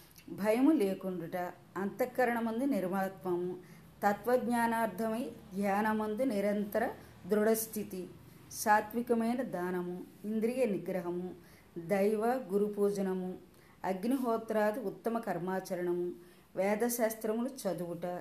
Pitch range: 185-225 Hz